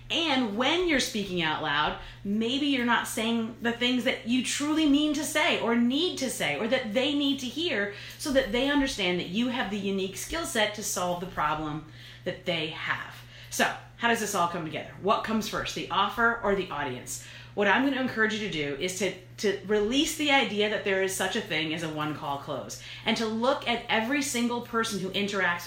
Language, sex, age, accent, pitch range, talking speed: English, female, 40-59, American, 185-250 Hz, 220 wpm